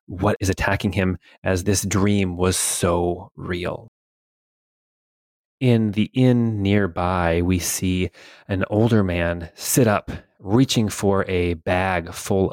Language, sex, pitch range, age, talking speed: English, male, 90-105 Hz, 30-49, 125 wpm